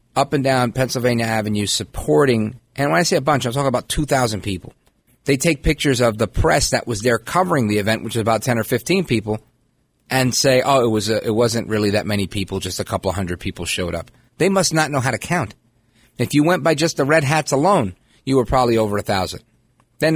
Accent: American